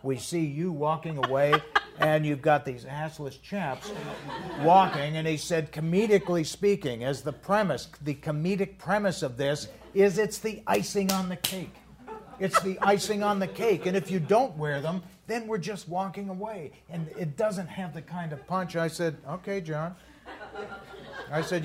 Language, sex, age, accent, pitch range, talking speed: English, male, 50-69, American, 135-180 Hz, 175 wpm